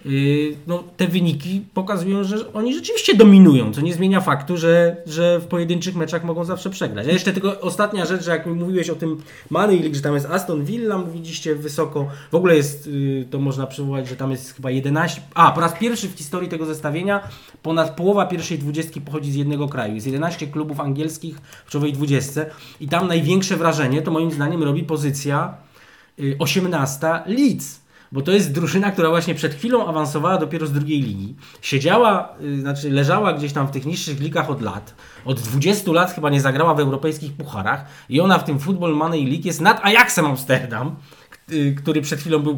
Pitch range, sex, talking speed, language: 145-175 Hz, male, 190 wpm, Polish